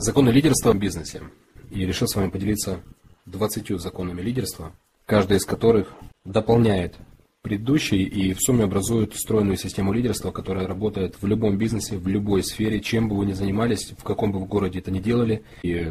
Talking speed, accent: 175 wpm, native